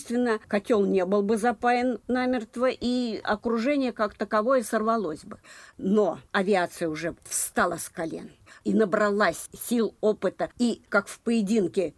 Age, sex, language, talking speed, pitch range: 50-69, female, Russian, 135 wpm, 180-225 Hz